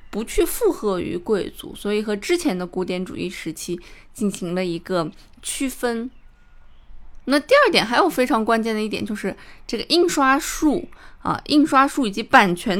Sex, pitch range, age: female, 195-270 Hz, 20-39